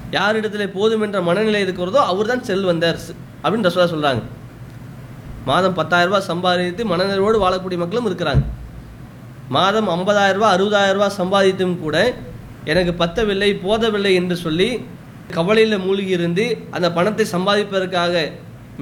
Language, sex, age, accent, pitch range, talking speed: English, male, 20-39, Indian, 170-215 Hz, 170 wpm